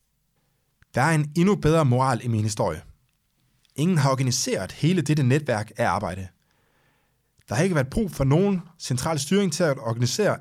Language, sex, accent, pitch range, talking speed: Danish, male, native, 115-150 Hz, 165 wpm